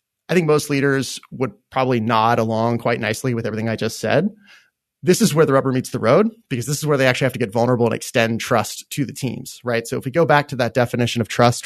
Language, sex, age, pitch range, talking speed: English, male, 30-49, 115-145 Hz, 255 wpm